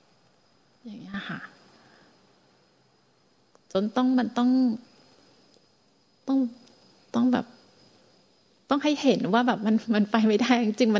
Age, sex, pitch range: 30-49, female, 215-250 Hz